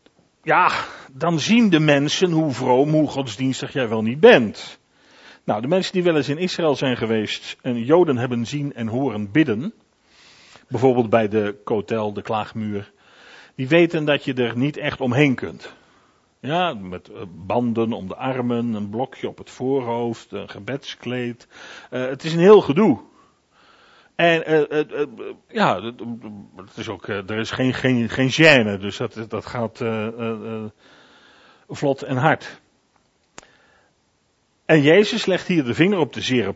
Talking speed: 160 wpm